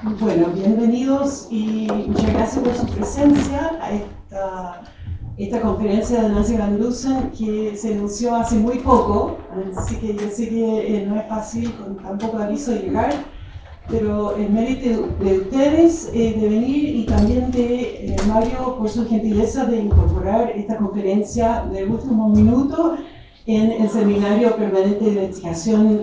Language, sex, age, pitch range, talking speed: English, female, 40-59, 195-230 Hz, 150 wpm